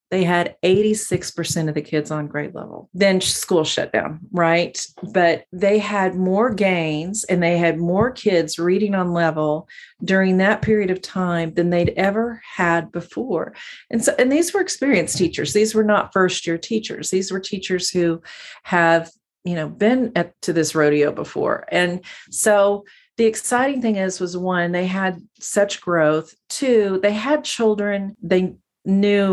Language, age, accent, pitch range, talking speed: English, 40-59, American, 175-210 Hz, 165 wpm